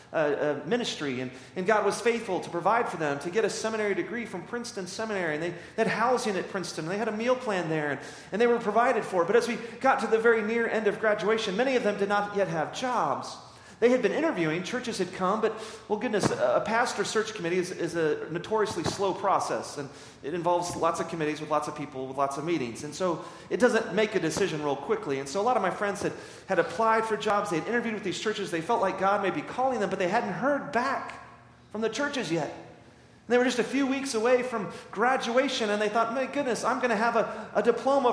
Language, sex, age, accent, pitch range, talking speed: English, male, 40-59, American, 150-225 Hz, 250 wpm